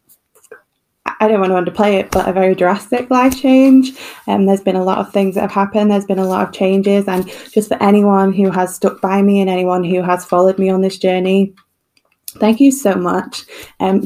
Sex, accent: female, British